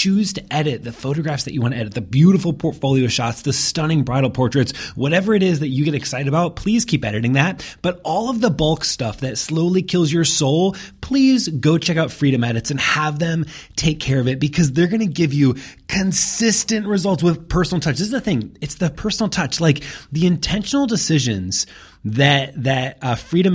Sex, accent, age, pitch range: male, American, 30-49, 130-180 Hz